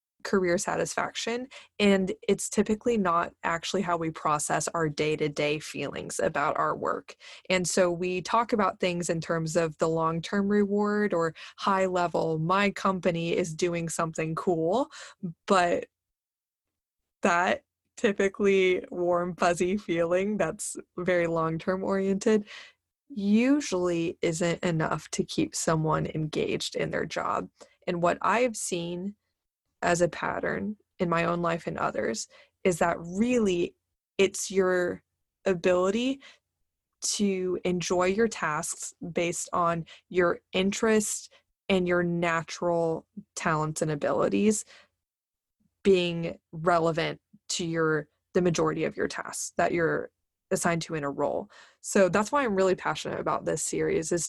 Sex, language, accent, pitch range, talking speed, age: female, English, American, 170-195 Hz, 130 wpm, 20-39